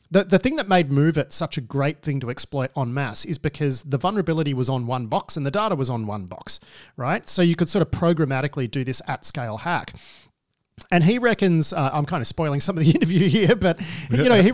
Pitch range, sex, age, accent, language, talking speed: 125-160 Hz, male, 40-59, Australian, English, 245 wpm